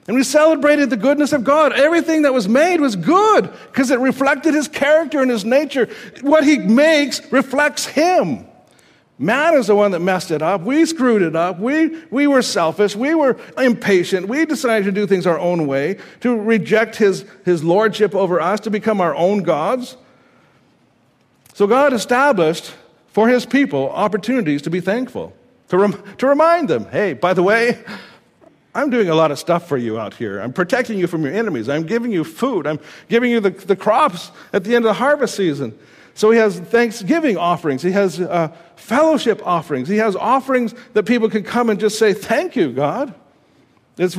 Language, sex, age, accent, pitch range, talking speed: English, male, 60-79, American, 190-265 Hz, 190 wpm